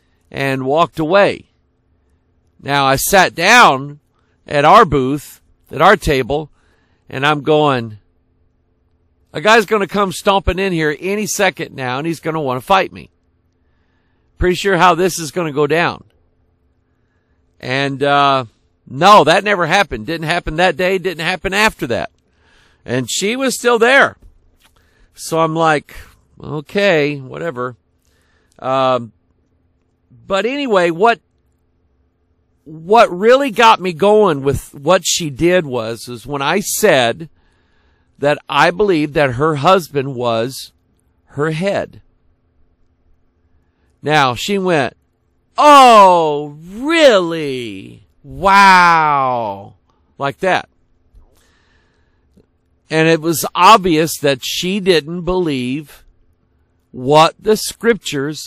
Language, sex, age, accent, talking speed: English, male, 50-69, American, 115 wpm